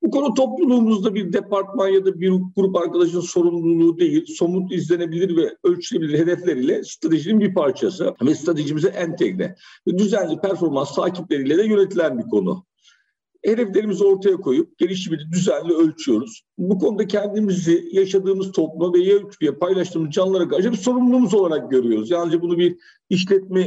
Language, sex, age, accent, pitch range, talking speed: Turkish, male, 50-69, native, 170-225 Hz, 140 wpm